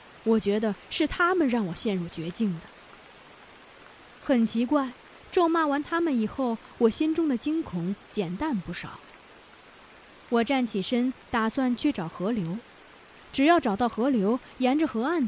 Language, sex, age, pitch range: Chinese, female, 20-39, 200-290 Hz